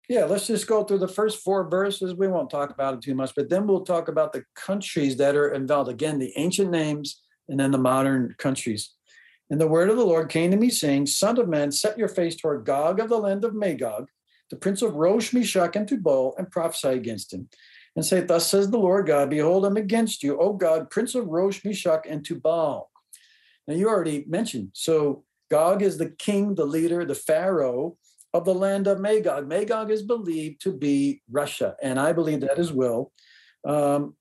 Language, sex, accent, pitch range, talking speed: English, male, American, 145-200 Hz, 210 wpm